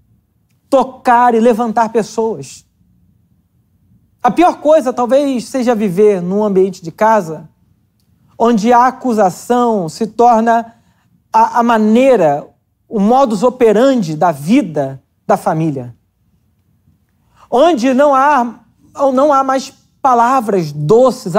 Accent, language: Brazilian, Portuguese